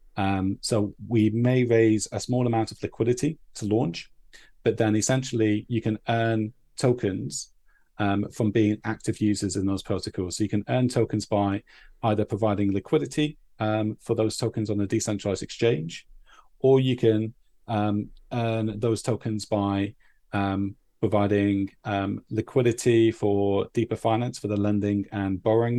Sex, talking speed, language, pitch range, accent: male, 150 wpm, English, 100-115 Hz, British